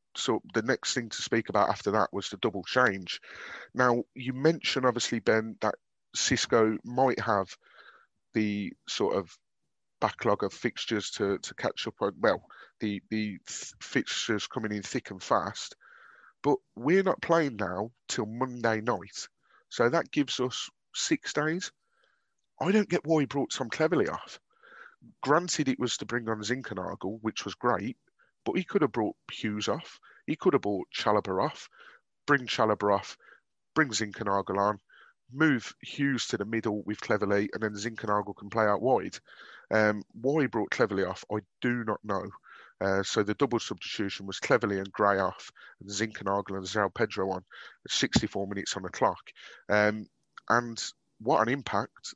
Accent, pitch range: British, 100-125 Hz